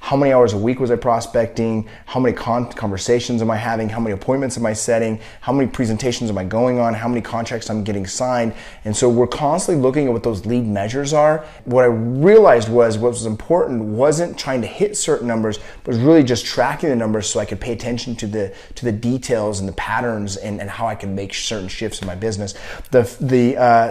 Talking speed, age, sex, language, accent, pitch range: 235 wpm, 30-49, male, English, American, 105-125 Hz